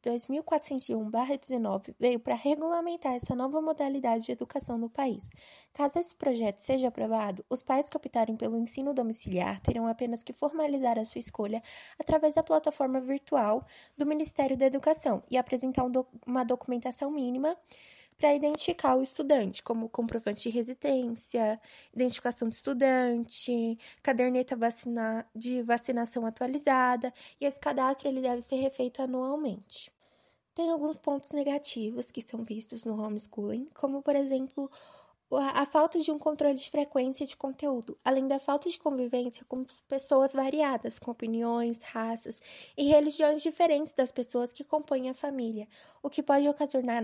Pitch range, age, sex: 240-290 Hz, 10-29, female